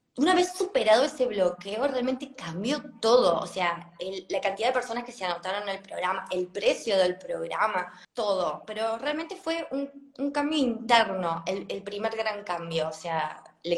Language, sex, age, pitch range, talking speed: Spanish, female, 20-39, 195-260 Hz, 180 wpm